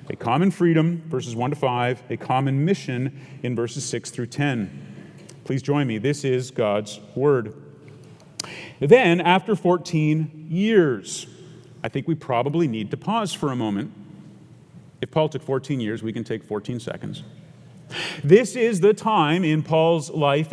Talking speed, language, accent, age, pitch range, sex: 155 wpm, English, American, 40-59, 135-170 Hz, male